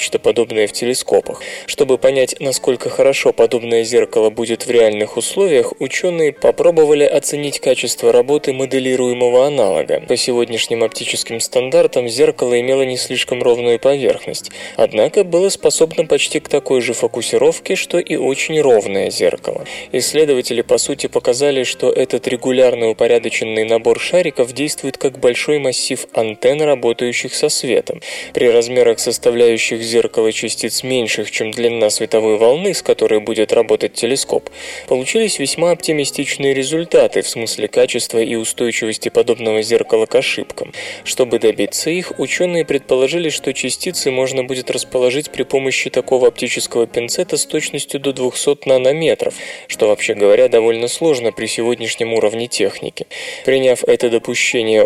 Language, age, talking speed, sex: Russian, 20-39, 130 wpm, male